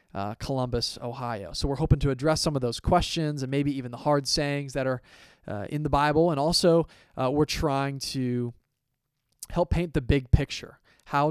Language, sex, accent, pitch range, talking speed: English, male, American, 120-140 Hz, 190 wpm